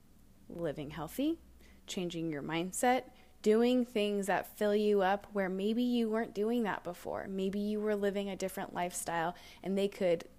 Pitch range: 175-210 Hz